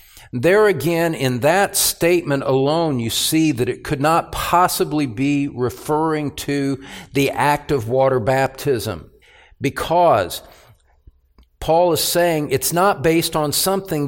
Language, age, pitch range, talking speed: English, 50-69, 135-190 Hz, 130 wpm